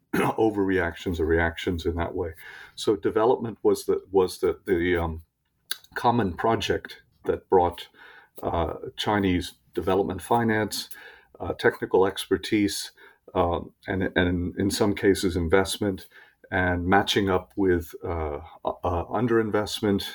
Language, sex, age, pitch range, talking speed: English, male, 50-69, 90-115 Hz, 115 wpm